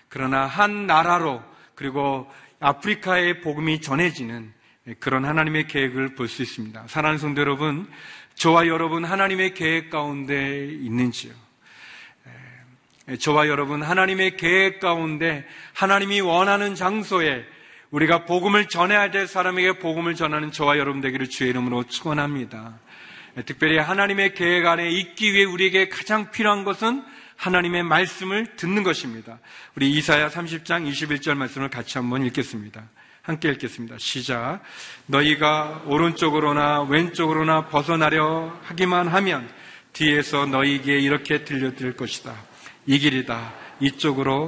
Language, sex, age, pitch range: Korean, male, 40-59, 130-170 Hz